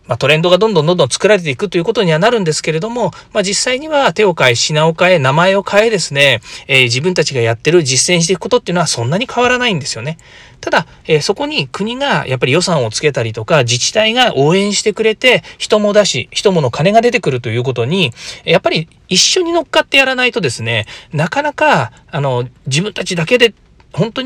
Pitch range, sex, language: 130-205 Hz, male, Japanese